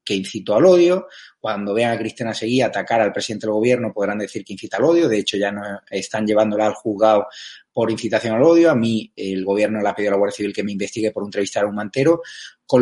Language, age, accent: Spanish, 30-49, Spanish